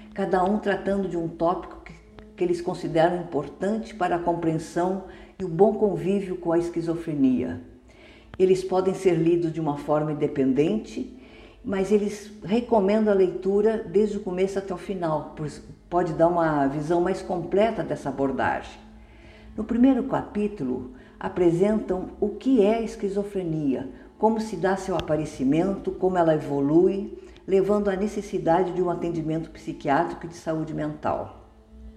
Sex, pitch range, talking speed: female, 155-205 Hz, 145 wpm